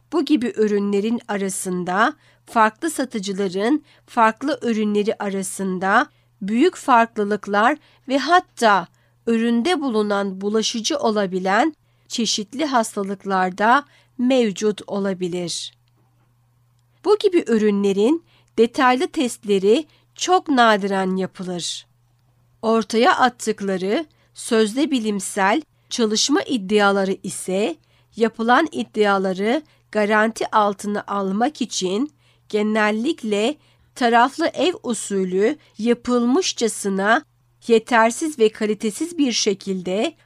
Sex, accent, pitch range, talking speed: female, native, 190-240 Hz, 80 wpm